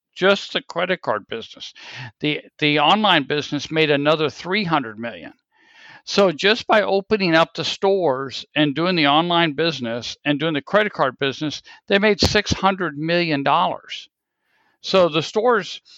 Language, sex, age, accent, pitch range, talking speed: English, male, 60-79, American, 145-185 Hz, 145 wpm